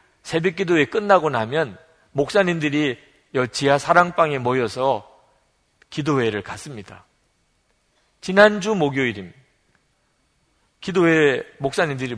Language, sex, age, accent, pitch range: Korean, male, 40-59, native, 135-200 Hz